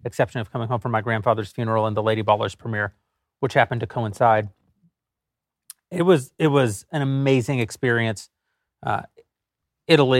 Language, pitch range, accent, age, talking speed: English, 115-140 Hz, American, 30-49, 155 wpm